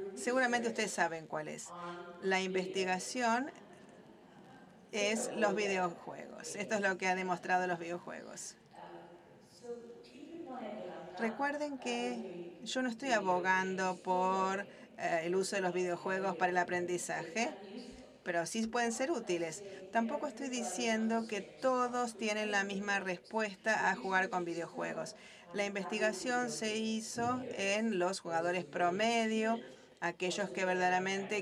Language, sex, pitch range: English, female, 180-220 Hz